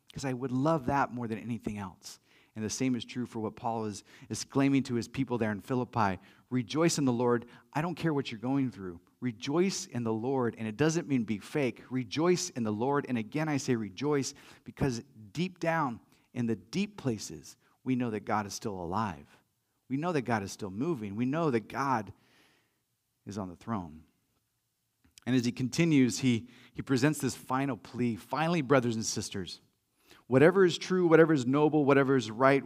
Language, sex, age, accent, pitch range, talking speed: English, male, 40-59, American, 115-150 Hz, 200 wpm